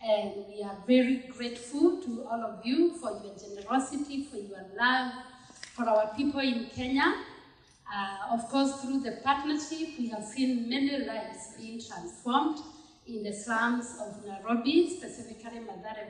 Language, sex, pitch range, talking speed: English, female, 215-270 Hz, 150 wpm